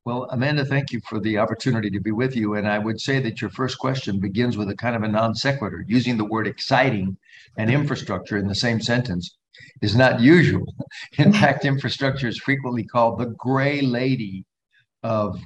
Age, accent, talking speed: 60-79, American, 195 wpm